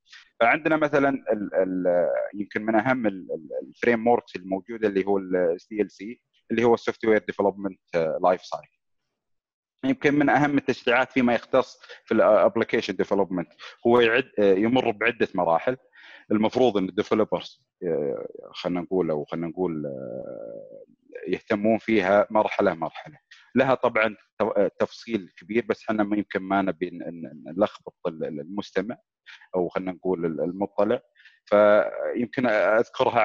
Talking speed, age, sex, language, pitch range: 120 wpm, 30-49, male, Arabic, 95-135 Hz